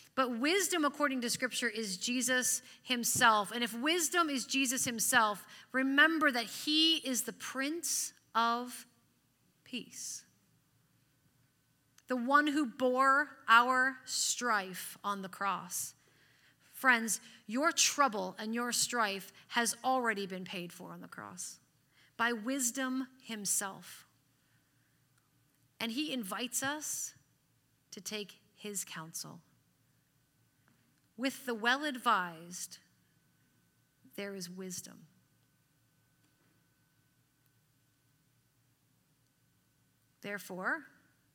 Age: 30-49